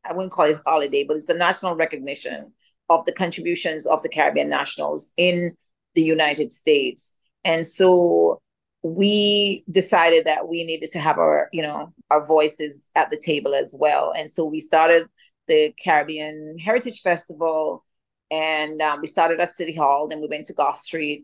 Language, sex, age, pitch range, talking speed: English, female, 30-49, 150-180 Hz, 170 wpm